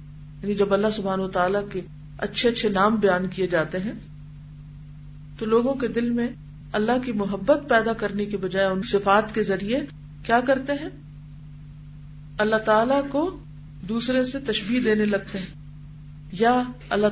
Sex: female